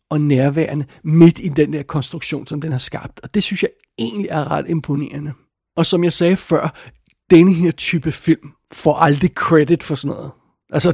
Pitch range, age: 140-170 Hz, 60-79